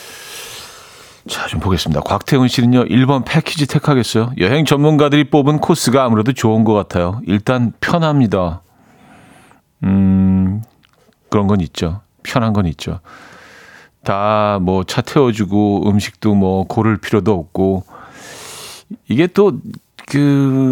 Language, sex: Korean, male